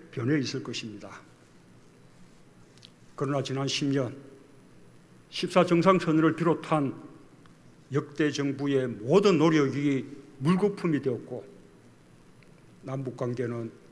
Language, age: Korean, 50-69